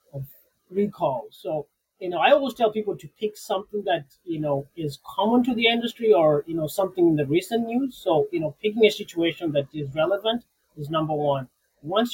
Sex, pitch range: male, 150-195 Hz